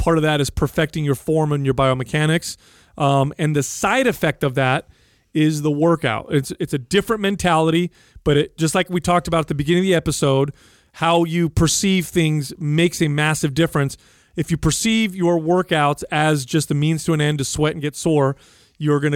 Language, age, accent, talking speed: English, 30-49, American, 205 wpm